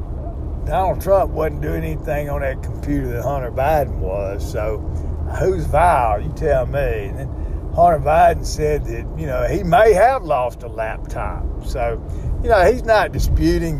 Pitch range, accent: 70-110 Hz, American